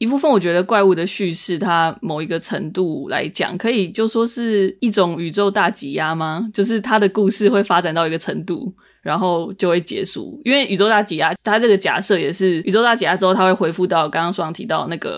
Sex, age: female, 20-39